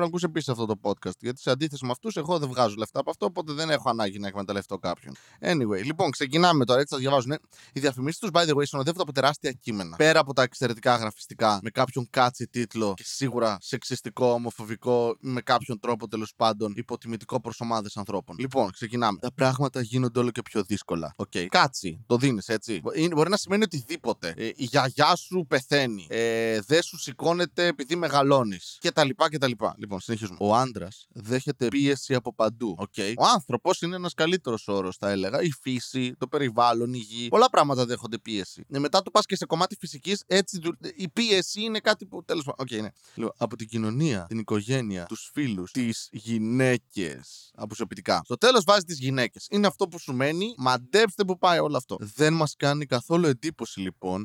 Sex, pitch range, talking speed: male, 115-155 Hz, 195 wpm